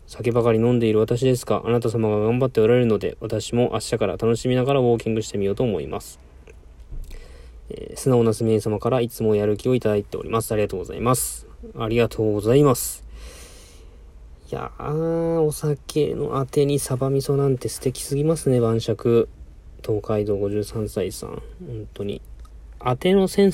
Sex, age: male, 20-39